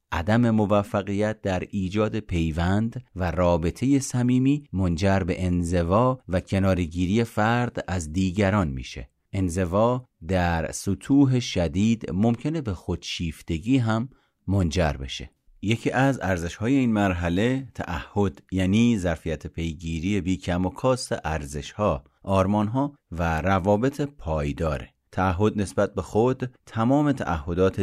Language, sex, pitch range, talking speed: Persian, male, 85-110 Hz, 110 wpm